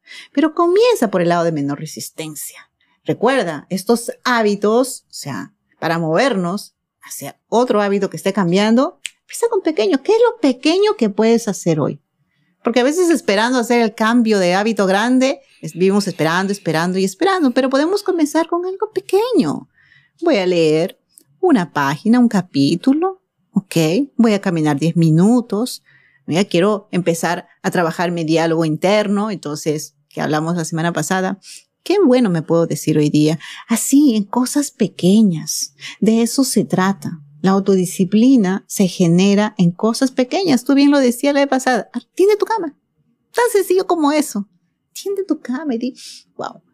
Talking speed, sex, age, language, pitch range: 160 wpm, female, 40-59, Spanish, 170-255 Hz